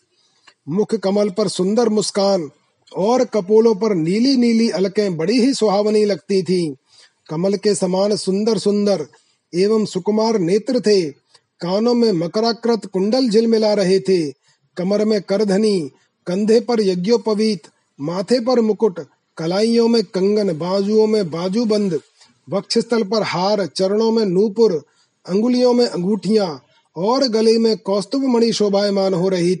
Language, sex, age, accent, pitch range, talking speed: Hindi, male, 30-49, native, 185-225 Hz, 130 wpm